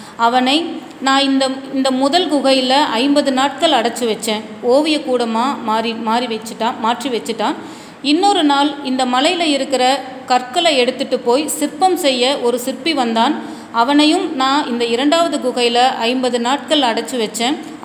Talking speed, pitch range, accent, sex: 130 wpm, 230-285 Hz, native, female